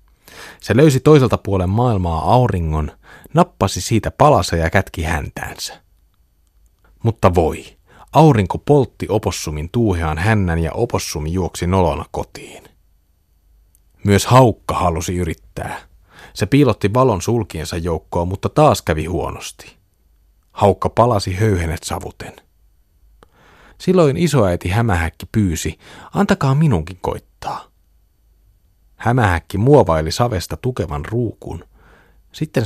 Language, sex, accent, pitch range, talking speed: Finnish, male, native, 80-115 Hz, 100 wpm